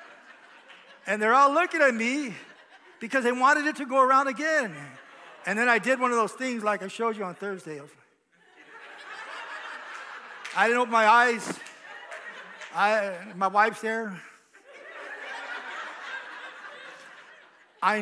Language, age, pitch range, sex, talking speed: English, 50-69, 210-265 Hz, male, 125 wpm